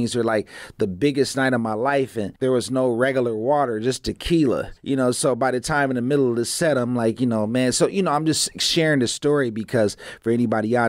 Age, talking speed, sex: 30-49, 250 wpm, male